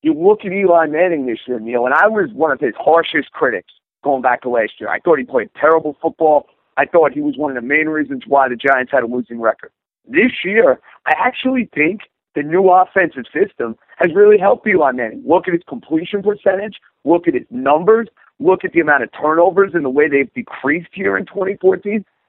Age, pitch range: 50-69, 145-205 Hz